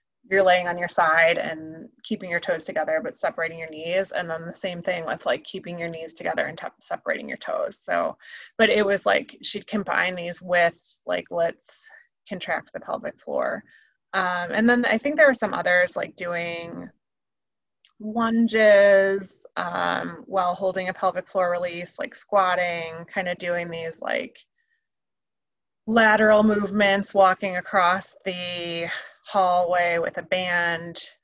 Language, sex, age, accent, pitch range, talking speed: English, female, 20-39, American, 175-220 Hz, 155 wpm